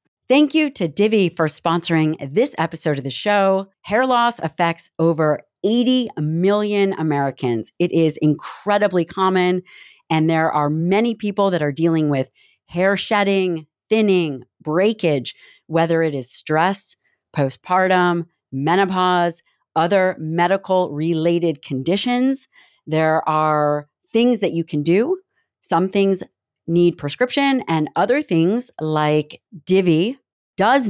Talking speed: 120 wpm